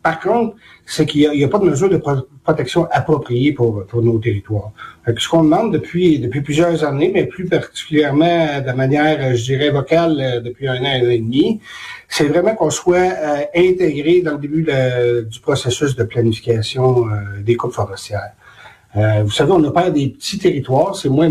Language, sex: French, male